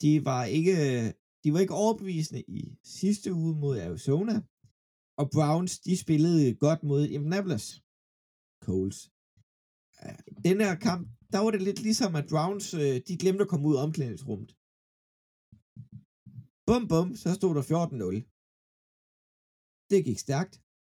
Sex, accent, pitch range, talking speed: male, native, 130-180 Hz, 130 wpm